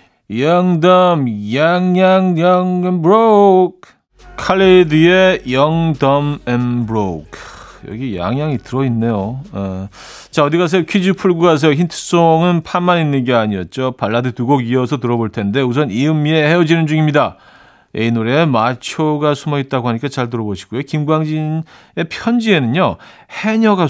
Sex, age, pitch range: male, 40-59, 115-170 Hz